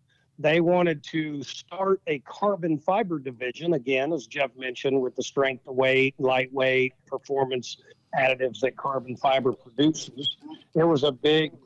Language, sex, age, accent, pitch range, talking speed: English, male, 50-69, American, 130-150 Hz, 145 wpm